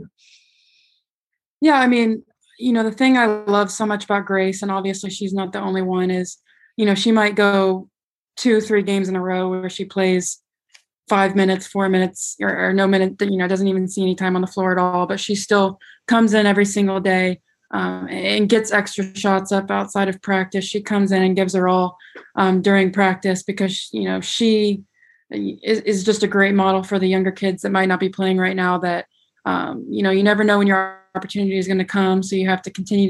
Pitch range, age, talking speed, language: 185-205 Hz, 20-39, 220 wpm, English